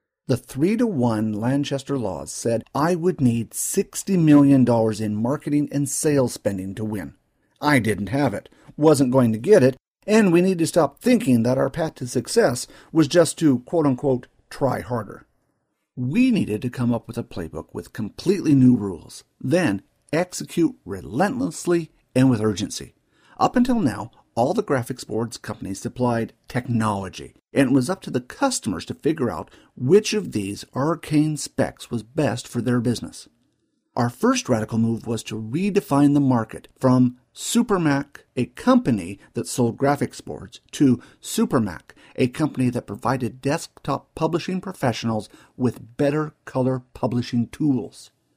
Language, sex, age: English, male, 50-69